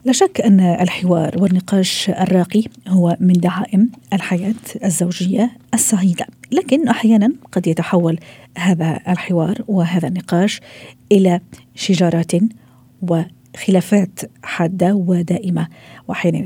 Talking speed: 95 wpm